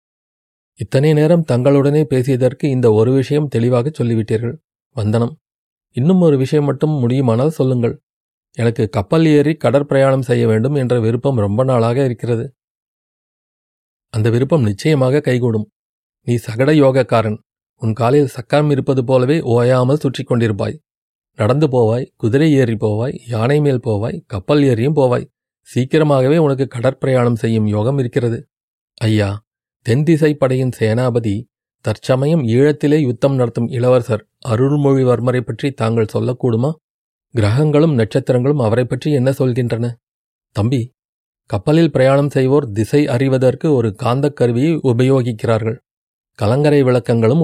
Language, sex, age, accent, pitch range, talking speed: Tamil, male, 40-59, native, 115-145 Hz, 110 wpm